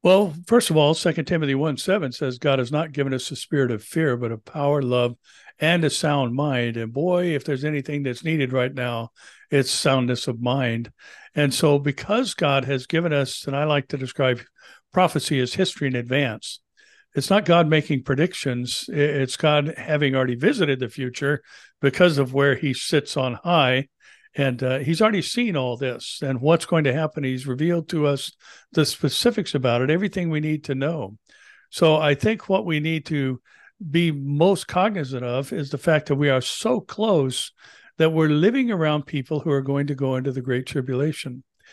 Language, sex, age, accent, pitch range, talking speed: English, male, 60-79, American, 130-165 Hz, 190 wpm